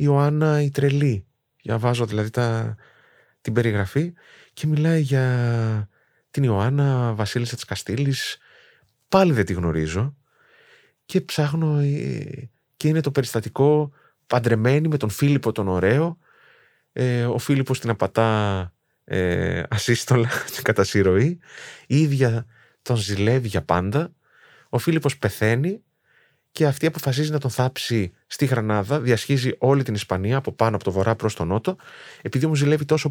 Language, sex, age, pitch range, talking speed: Greek, male, 20-39, 110-150 Hz, 135 wpm